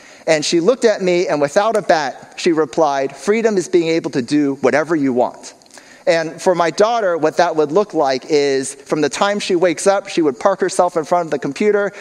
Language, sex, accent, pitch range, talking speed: English, male, American, 160-200 Hz, 225 wpm